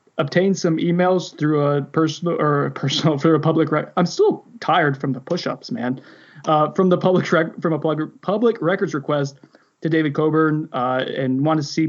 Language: English